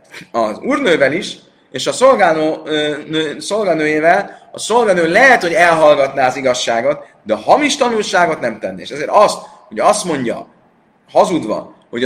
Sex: male